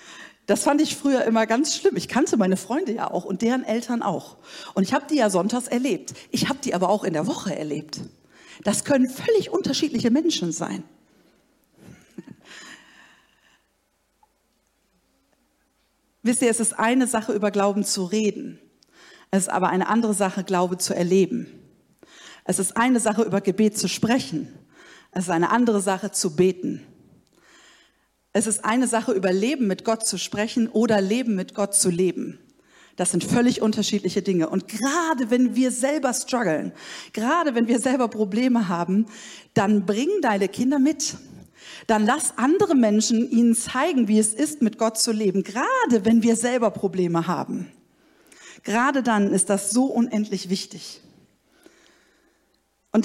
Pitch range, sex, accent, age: 200-260 Hz, female, German, 50-69